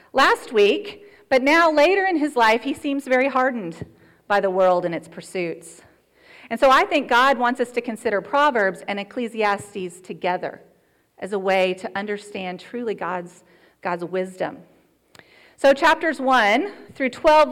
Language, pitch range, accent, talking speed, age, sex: English, 190-270 Hz, American, 155 wpm, 40-59, female